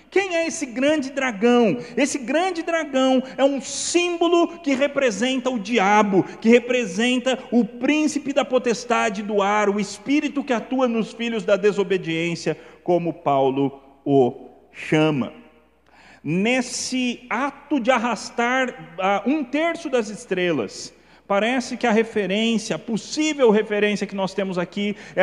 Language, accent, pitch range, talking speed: Portuguese, Brazilian, 180-255 Hz, 130 wpm